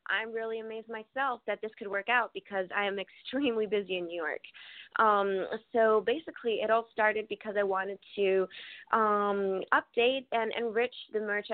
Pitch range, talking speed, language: 185-220 Hz, 175 wpm, English